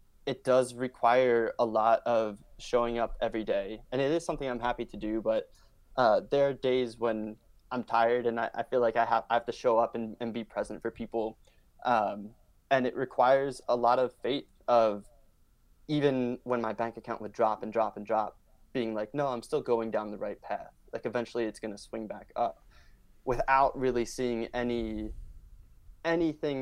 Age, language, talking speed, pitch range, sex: 20-39, English, 195 wpm, 110-125 Hz, male